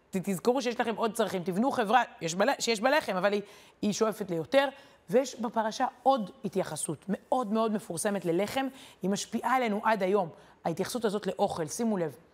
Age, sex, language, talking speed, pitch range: 30-49, female, Hebrew, 160 wpm, 185-230 Hz